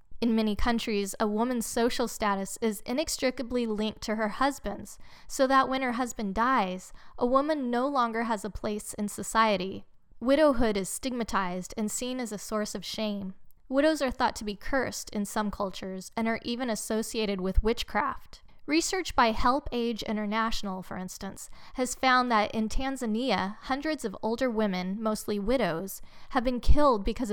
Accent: American